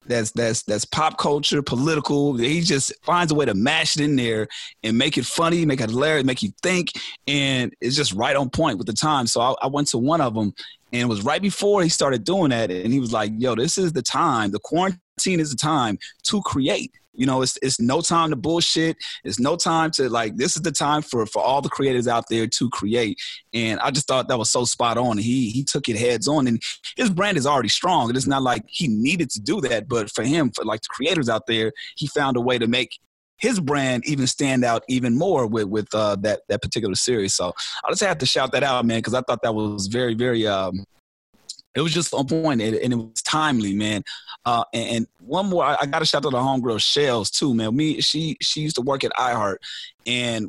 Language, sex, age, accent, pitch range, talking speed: English, male, 30-49, American, 115-150 Hz, 240 wpm